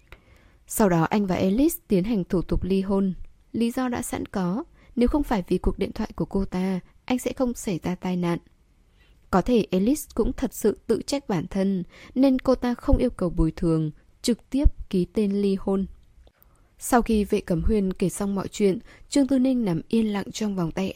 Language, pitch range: Vietnamese, 175-225 Hz